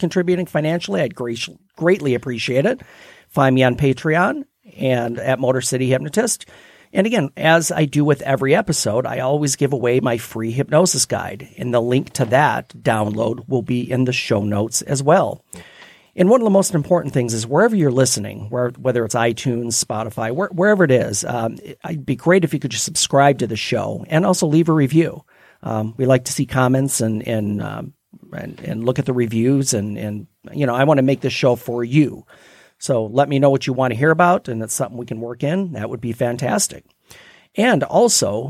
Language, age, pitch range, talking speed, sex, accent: English, 40-59, 120-150 Hz, 205 wpm, male, American